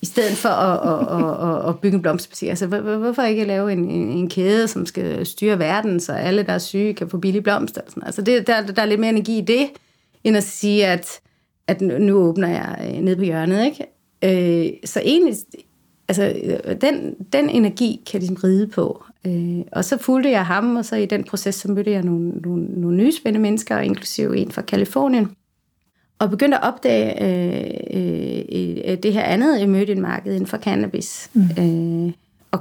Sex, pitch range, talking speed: female, 180-230 Hz, 190 wpm